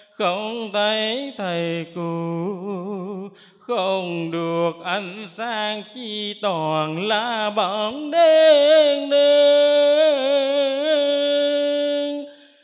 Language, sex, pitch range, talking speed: Vietnamese, male, 200-295 Hz, 65 wpm